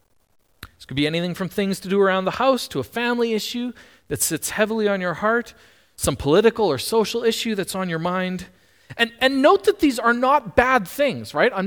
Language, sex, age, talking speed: English, male, 40-59, 210 wpm